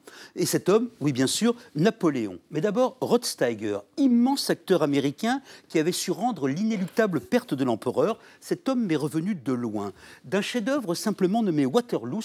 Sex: male